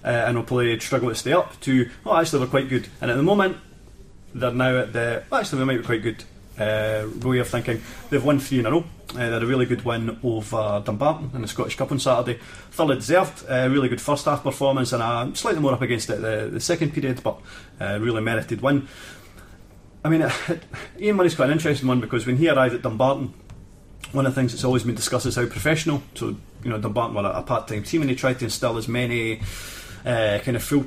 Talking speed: 240 wpm